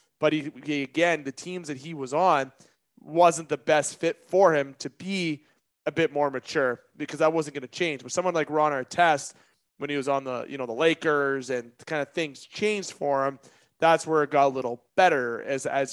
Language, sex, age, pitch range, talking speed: English, male, 30-49, 140-175 Hz, 220 wpm